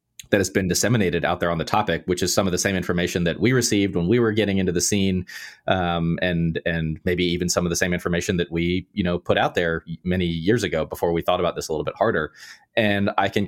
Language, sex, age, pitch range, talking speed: English, male, 30-49, 85-105 Hz, 260 wpm